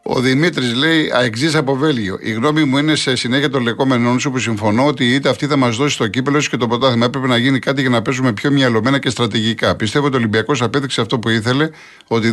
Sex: male